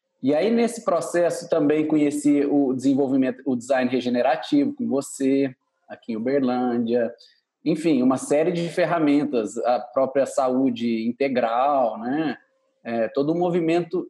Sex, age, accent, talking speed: male, 20-39, Brazilian, 125 wpm